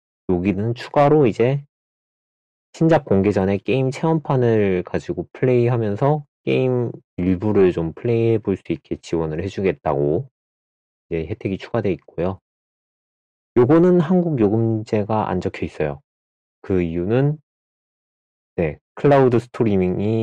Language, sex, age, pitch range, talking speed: English, male, 30-49, 80-115 Hz, 100 wpm